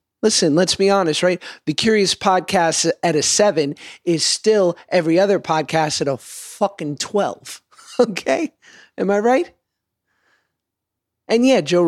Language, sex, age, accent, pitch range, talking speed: English, male, 30-49, American, 150-205 Hz, 135 wpm